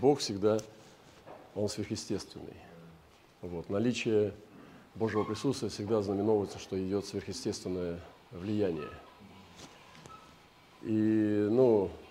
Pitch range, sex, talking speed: 100-115 Hz, male, 75 wpm